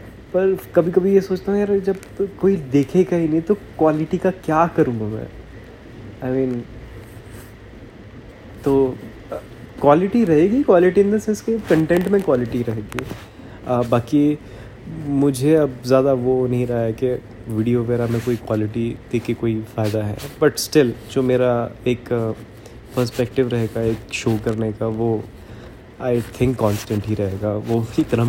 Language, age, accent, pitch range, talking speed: Hindi, 20-39, native, 110-130 Hz, 150 wpm